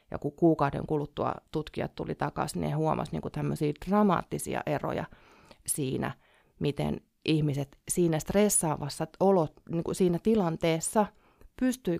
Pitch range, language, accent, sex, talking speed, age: 150-185 Hz, Finnish, native, female, 125 wpm, 30-49